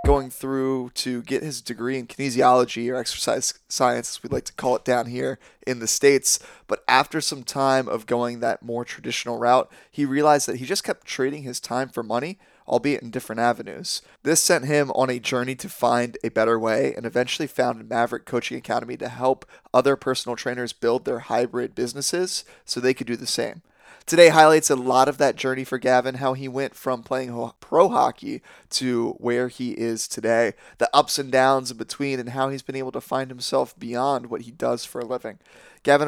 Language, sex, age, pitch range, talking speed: English, male, 20-39, 120-140 Hz, 205 wpm